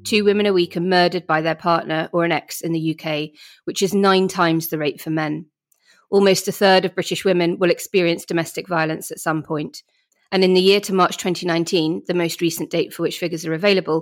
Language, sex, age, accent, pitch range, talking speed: English, female, 30-49, British, 165-200 Hz, 225 wpm